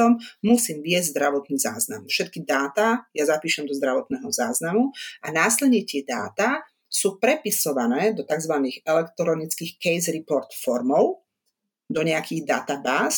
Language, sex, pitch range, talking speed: Slovak, female, 145-205 Hz, 120 wpm